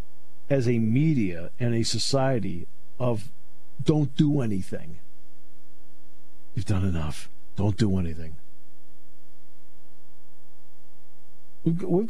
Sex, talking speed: male, 85 wpm